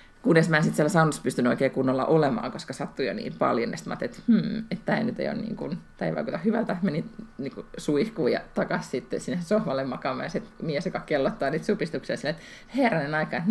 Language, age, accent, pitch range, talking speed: Finnish, 30-49, native, 160-220 Hz, 205 wpm